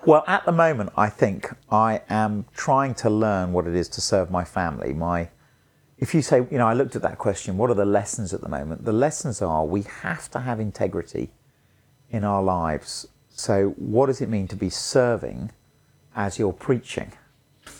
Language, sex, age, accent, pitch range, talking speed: English, male, 40-59, British, 95-130 Hz, 195 wpm